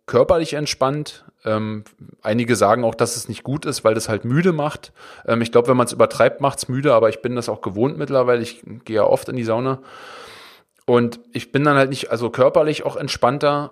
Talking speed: 220 wpm